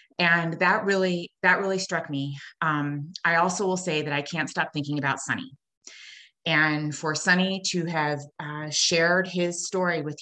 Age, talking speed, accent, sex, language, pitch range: 30-49, 170 wpm, American, female, English, 150-200 Hz